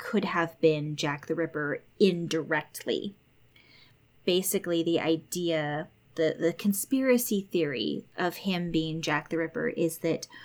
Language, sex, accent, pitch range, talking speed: English, female, American, 150-175 Hz, 125 wpm